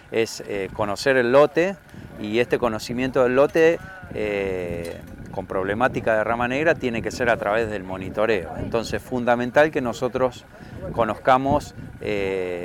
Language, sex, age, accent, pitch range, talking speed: Spanish, male, 40-59, Argentinian, 110-145 Hz, 140 wpm